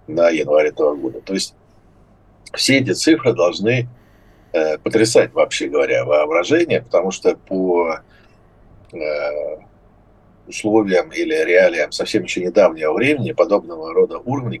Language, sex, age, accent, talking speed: Russian, male, 50-69, native, 120 wpm